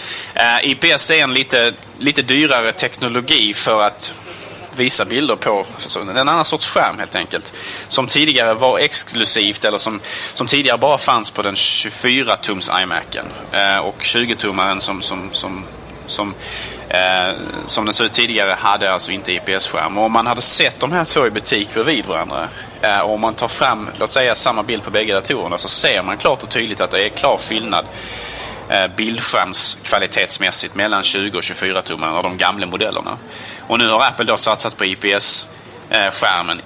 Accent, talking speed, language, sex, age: Norwegian, 165 wpm, Swedish, male, 30-49